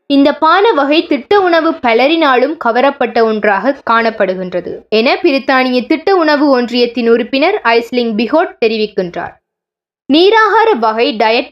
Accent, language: native, Tamil